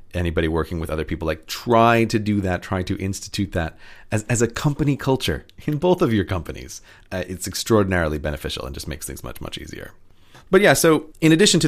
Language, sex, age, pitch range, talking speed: English, male, 30-49, 90-115 Hz, 210 wpm